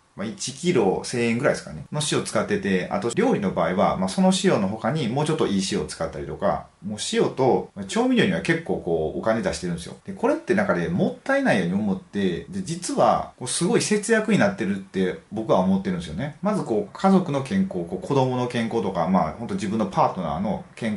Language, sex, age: Japanese, male, 30-49